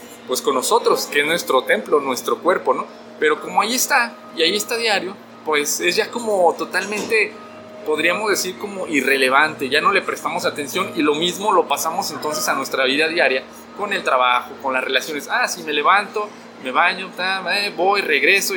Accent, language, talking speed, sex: Mexican, Spanish, 185 wpm, male